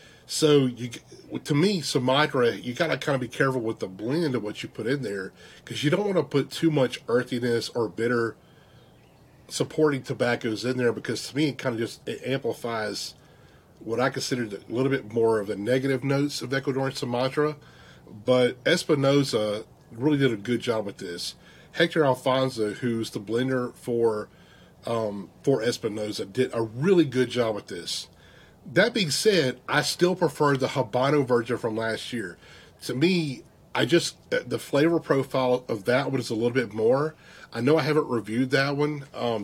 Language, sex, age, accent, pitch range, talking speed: English, male, 40-59, American, 120-145 Hz, 185 wpm